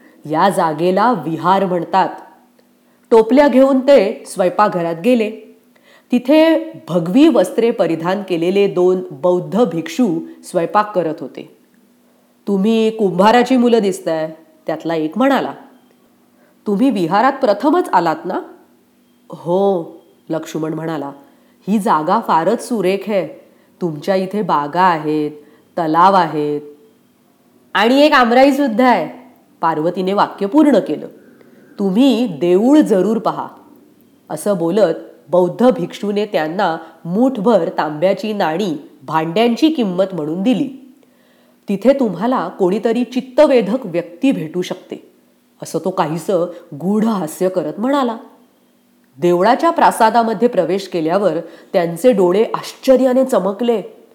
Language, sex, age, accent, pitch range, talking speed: English, female, 30-49, Indian, 175-255 Hz, 105 wpm